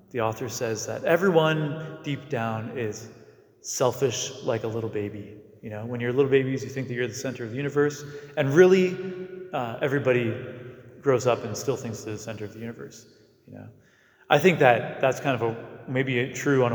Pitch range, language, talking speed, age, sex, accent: 110-130 Hz, English, 205 wpm, 30-49, male, American